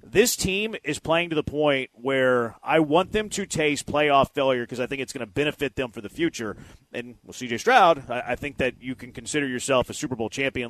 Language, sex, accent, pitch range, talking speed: English, male, American, 130-195 Hz, 235 wpm